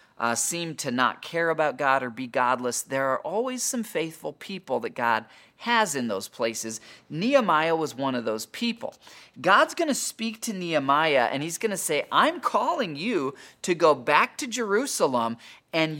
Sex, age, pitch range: male, 40-59, 130-215 Hz